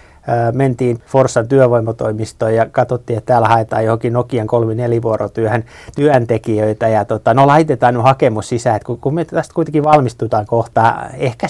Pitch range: 115-145 Hz